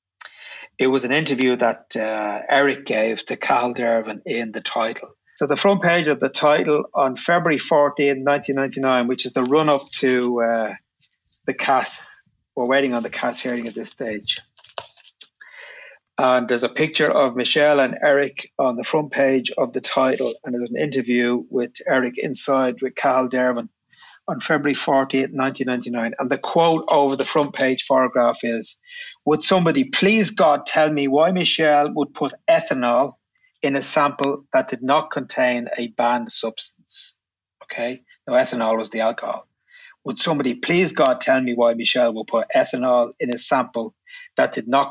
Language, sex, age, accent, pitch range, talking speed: English, male, 30-49, Irish, 120-150 Hz, 165 wpm